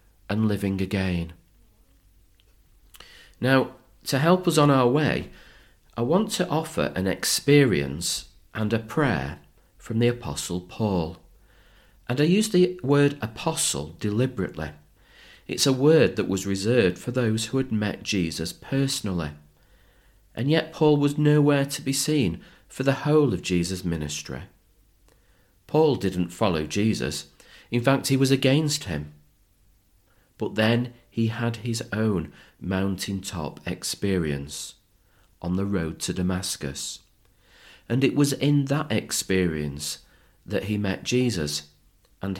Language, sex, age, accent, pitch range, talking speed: English, male, 40-59, British, 90-125 Hz, 130 wpm